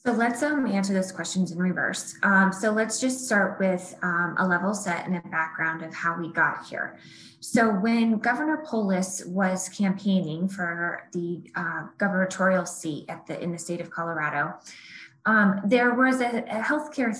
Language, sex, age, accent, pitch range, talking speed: English, female, 20-39, American, 180-225 Hz, 175 wpm